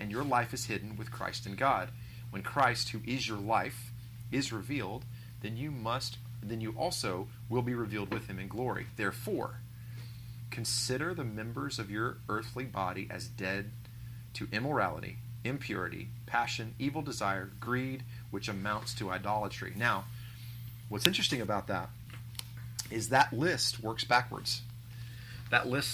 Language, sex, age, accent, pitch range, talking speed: English, male, 30-49, American, 110-125 Hz, 145 wpm